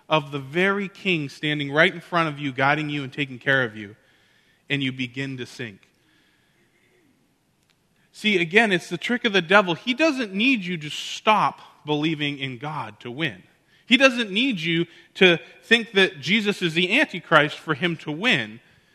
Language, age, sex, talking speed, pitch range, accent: English, 20-39, male, 175 wpm, 135-185 Hz, American